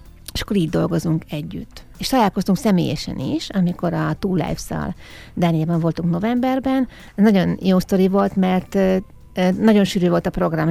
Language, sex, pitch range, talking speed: Hungarian, female, 165-200 Hz, 140 wpm